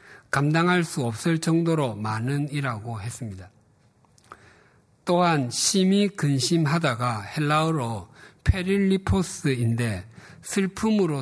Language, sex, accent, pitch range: Korean, male, native, 120-165 Hz